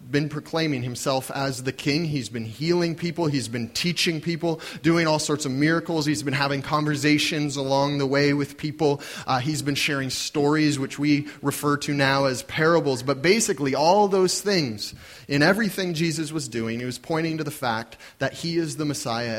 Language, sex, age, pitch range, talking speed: English, male, 30-49, 135-165 Hz, 190 wpm